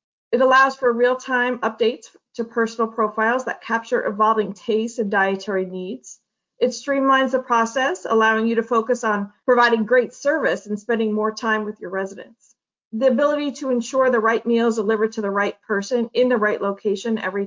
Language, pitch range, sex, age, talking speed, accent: English, 215-255 Hz, female, 40-59, 175 wpm, American